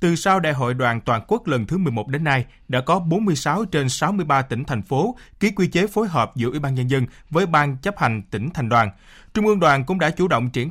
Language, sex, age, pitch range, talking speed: Vietnamese, male, 20-39, 125-175 Hz, 250 wpm